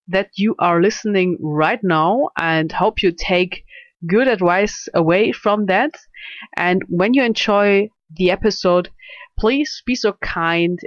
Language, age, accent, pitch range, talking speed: English, 30-49, German, 155-195 Hz, 140 wpm